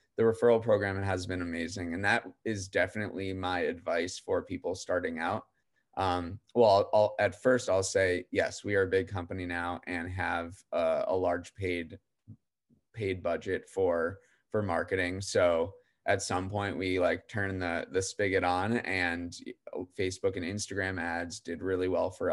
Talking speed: 165 wpm